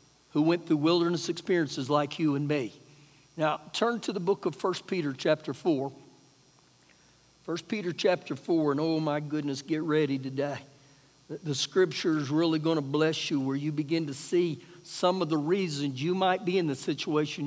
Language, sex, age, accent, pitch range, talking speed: English, male, 60-79, American, 150-235 Hz, 180 wpm